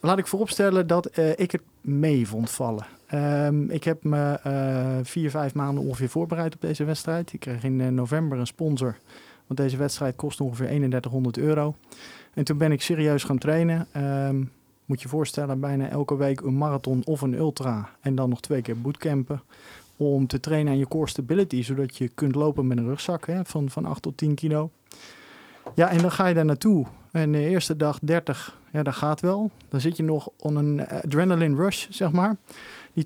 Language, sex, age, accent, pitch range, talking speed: Dutch, male, 40-59, Dutch, 135-160 Hz, 195 wpm